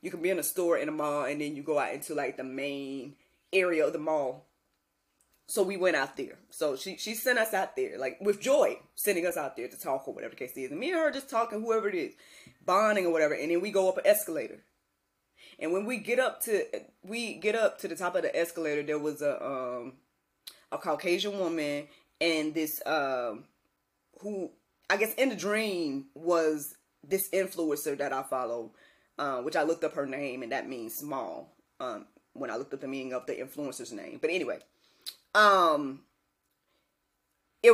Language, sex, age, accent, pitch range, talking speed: English, female, 20-39, American, 150-220 Hz, 205 wpm